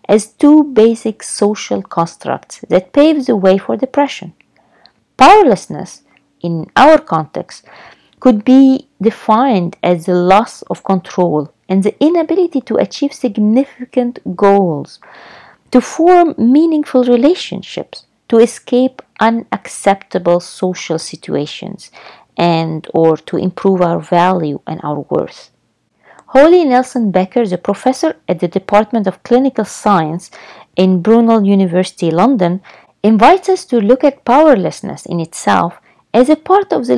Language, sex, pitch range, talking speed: English, female, 185-265 Hz, 125 wpm